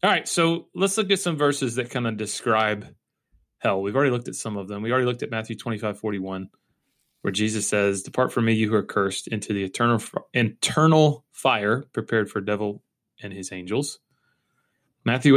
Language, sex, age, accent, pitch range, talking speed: English, male, 30-49, American, 105-130 Hz, 195 wpm